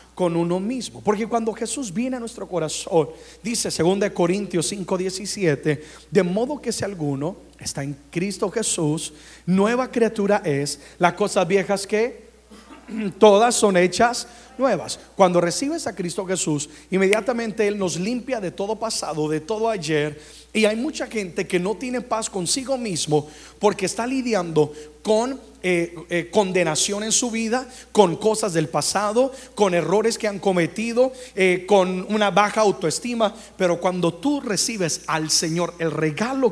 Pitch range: 170-225 Hz